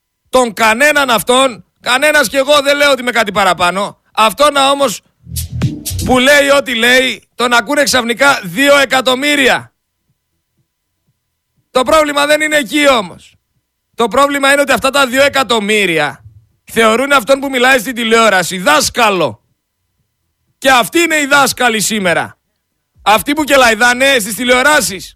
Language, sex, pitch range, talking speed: Greek, male, 220-275 Hz, 130 wpm